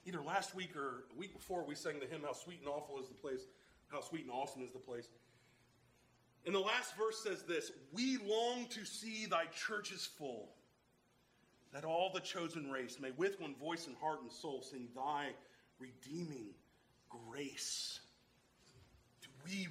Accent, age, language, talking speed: American, 40-59, English, 175 wpm